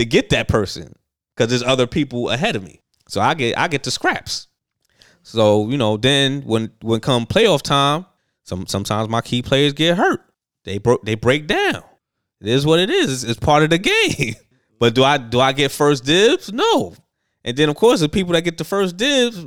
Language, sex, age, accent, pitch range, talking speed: English, male, 20-39, American, 115-165 Hz, 215 wpm